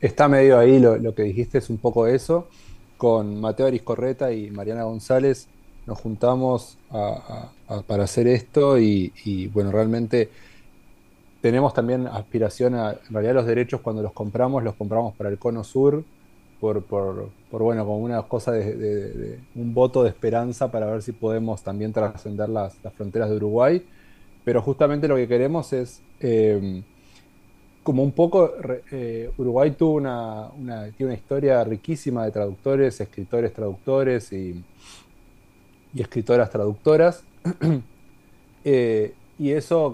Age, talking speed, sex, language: 20-39, 155 wpm, male, Spanish